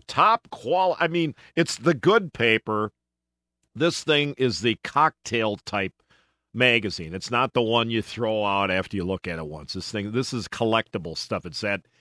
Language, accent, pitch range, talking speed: English, American, 110-165 Hz, 180 wpm